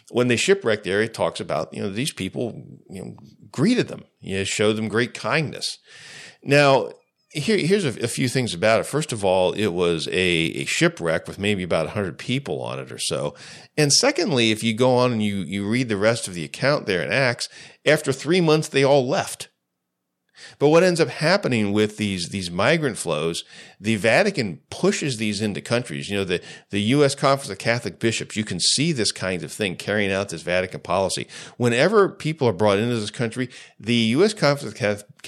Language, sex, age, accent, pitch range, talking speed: English, male, 40-59, American, 100-135 Hz, 205 wpm